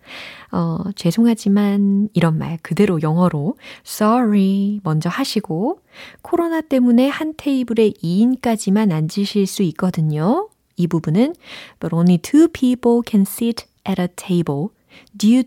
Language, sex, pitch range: Korean, female, 165-235 Hz